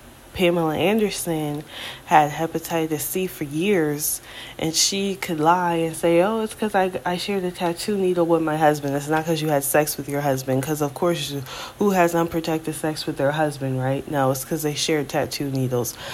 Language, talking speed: English, 195 wpm